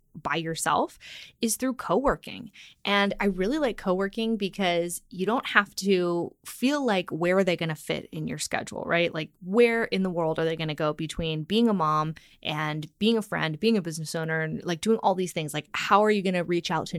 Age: 20-39